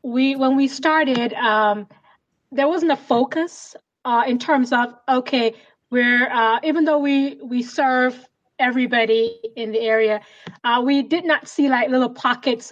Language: English